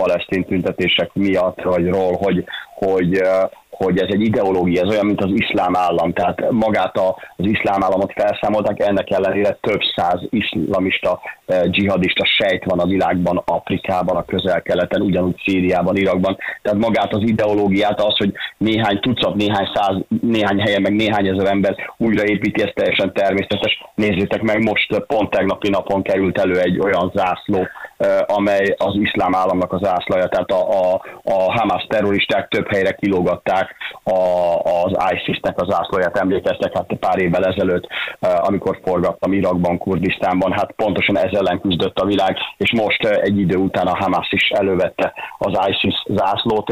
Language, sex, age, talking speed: Hungarian, male, 30-49, 150 wpm